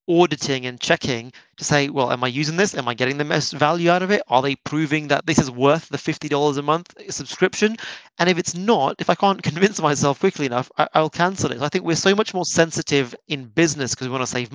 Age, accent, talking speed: 30-49, British, 250 wpm